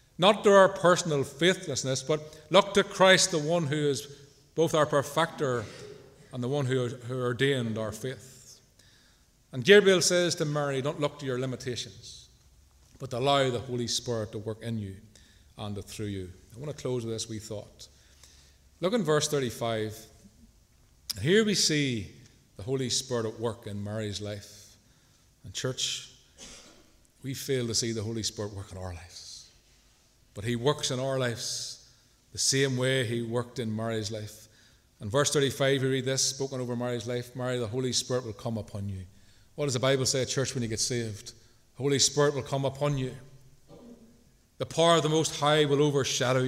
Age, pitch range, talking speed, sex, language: 40-59, 115-155 Hz, 180 wpm, male, English